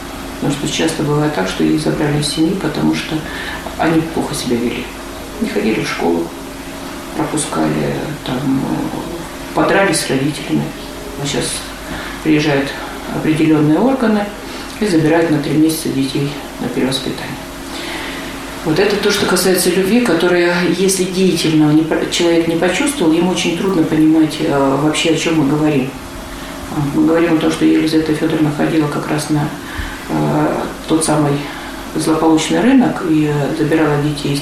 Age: 40-59